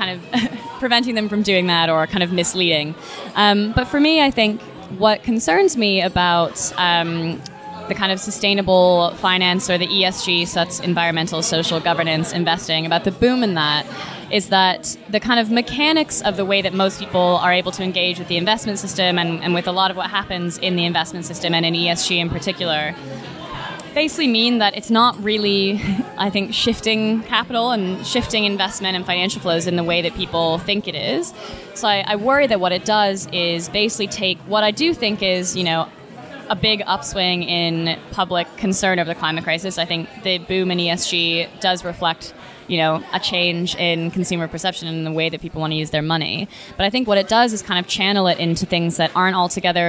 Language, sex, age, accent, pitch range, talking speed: English, female, 20-39, American, 170-205 Hz, 205 wpm